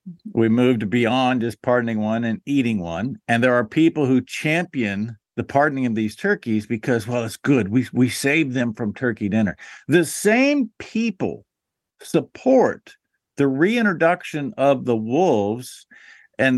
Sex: male